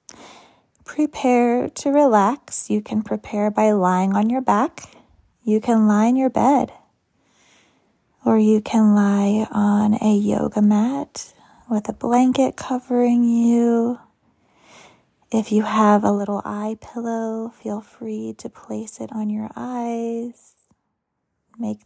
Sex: female